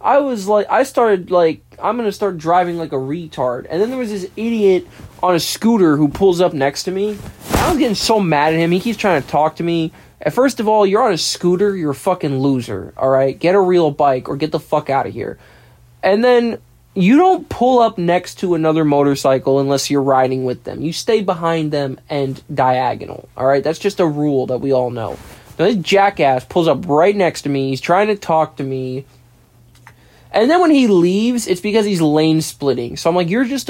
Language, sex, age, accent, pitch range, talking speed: English, male, 20-39, American, 135-205 Hz, 225 wpm